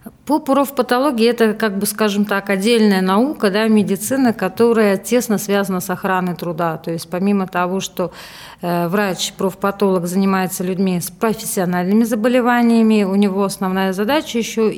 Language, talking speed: Russian, 120 wpm